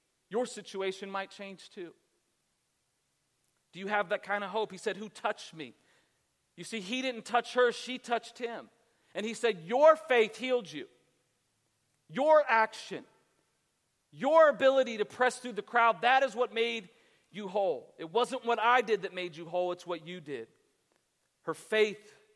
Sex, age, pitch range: male, 40-59, 155-215 Hz